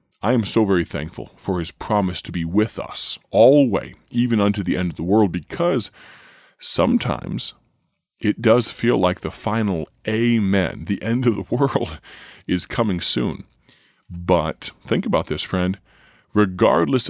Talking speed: 160 wpm